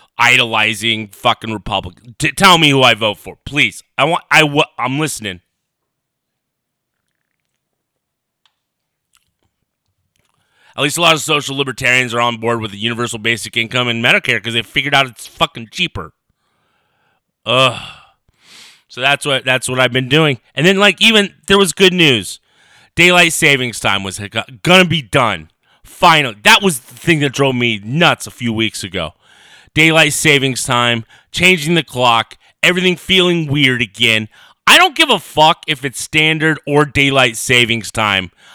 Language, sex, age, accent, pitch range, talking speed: English, male, 30-49, American, 120-180 Hz, 155 wpm